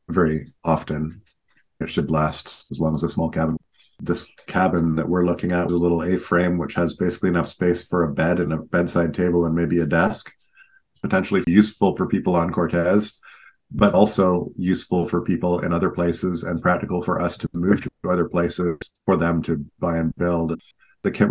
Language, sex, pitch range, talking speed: English, male, 85-90 Hz, 190 wpm